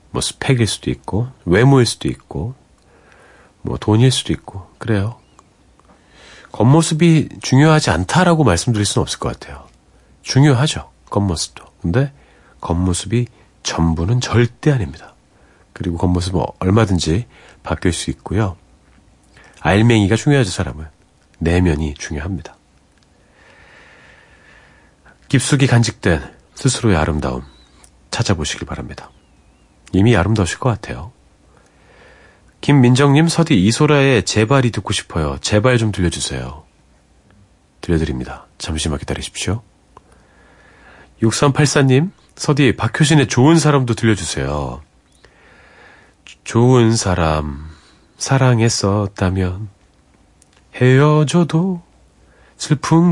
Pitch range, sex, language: 80-130 Hz, male, Korean